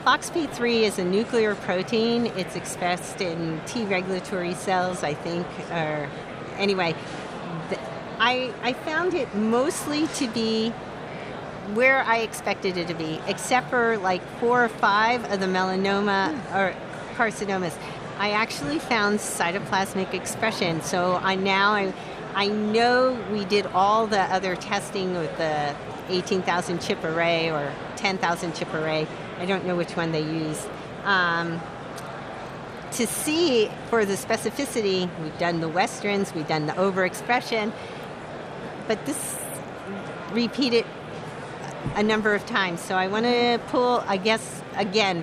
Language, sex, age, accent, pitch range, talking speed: English, female, 40-59, American, 180-225 Hz, 135 wpm